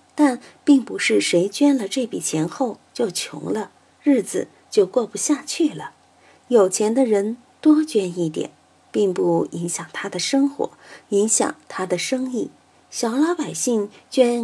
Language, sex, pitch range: Chinese, female, 185-280 Hz